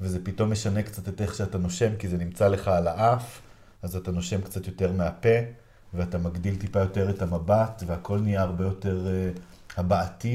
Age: 30-49